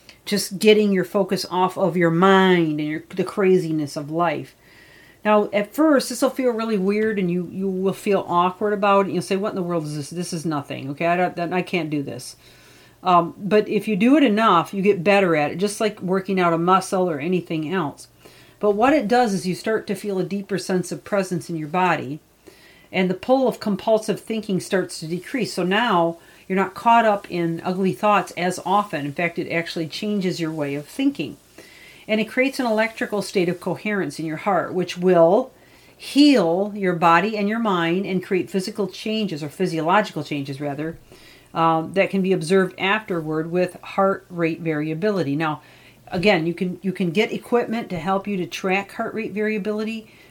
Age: 40-59